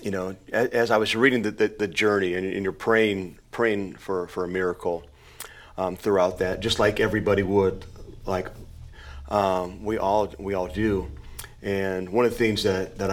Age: 40-59